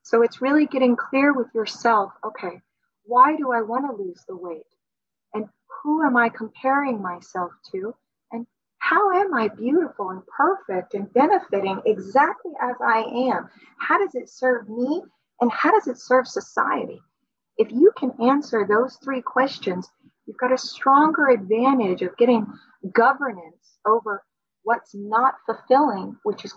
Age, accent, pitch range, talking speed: 30-49, American, 215-260 Hz, 155 wpm